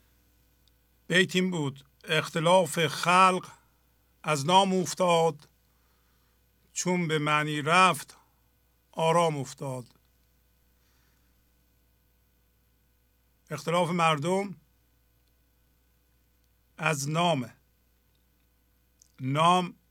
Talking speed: 55 wpm